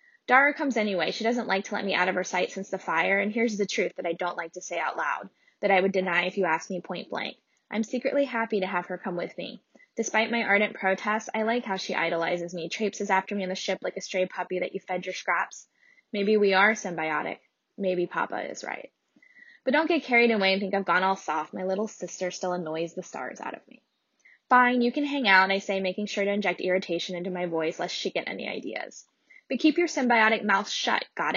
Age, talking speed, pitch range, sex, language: 10-29, 245 wpm, 185-235 Hz, female, English